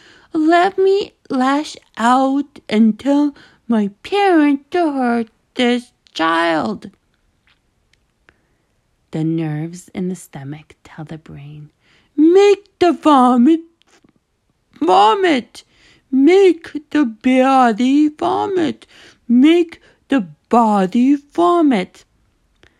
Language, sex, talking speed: English, female, 85 wpm